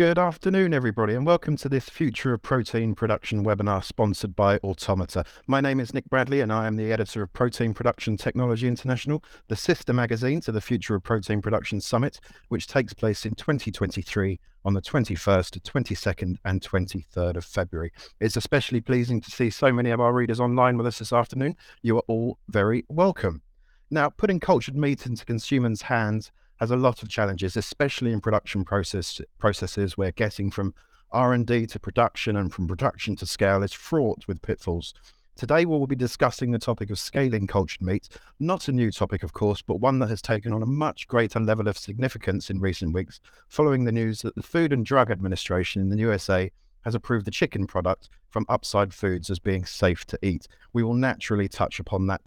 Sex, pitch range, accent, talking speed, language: male, 100-125 Hz, British, 190 wpm, English